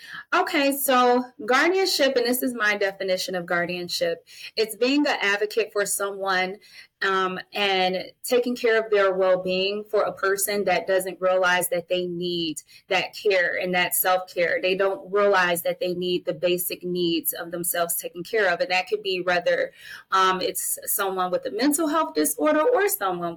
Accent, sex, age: American, female, 20-39